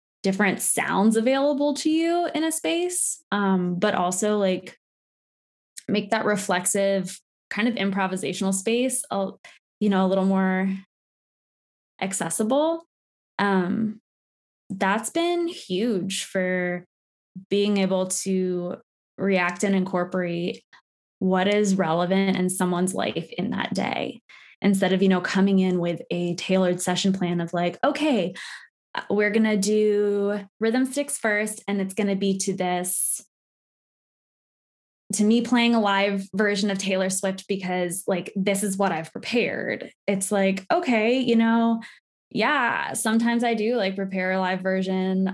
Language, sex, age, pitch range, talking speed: English, female, 20-39, 185-230 Hz, 140 wpm